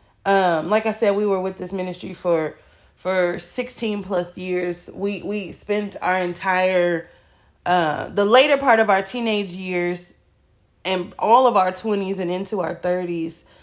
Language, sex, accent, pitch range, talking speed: English, female, American, 180-220 Hz, 160 wpm